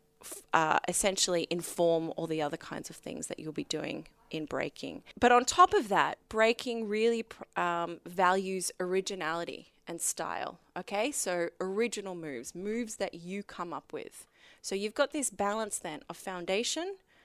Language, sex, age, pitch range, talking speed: English, female, 20-39, 170-215 Hz, 160 wpm